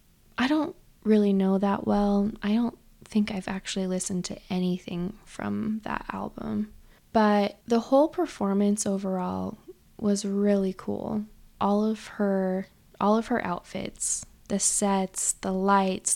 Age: 20-39